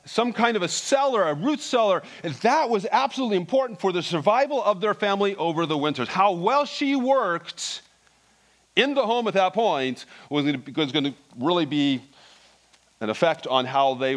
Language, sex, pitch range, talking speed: English, male, 115-180 Hz, 185 wpm